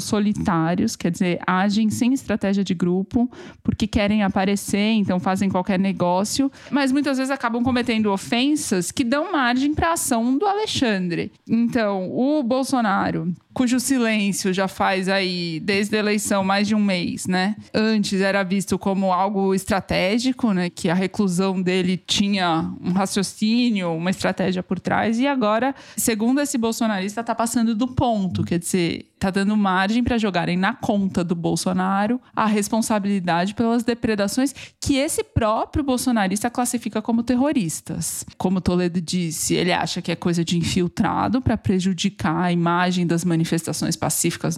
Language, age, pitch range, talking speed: Portuguese, 20-39, 185-235 Hz, 150 wpm